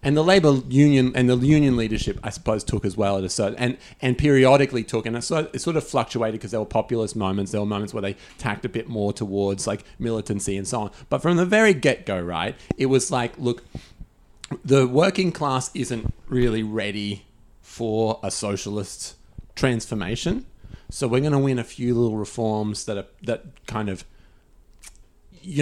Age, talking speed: 30-49, 185 wpm